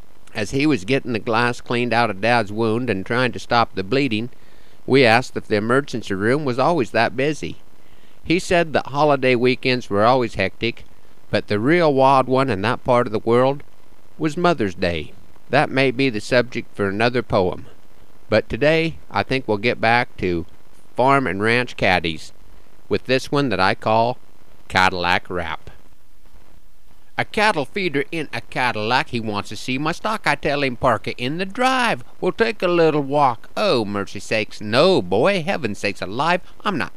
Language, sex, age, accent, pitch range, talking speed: English, male, 50-69, American, 105-145 Hz, 180 wpm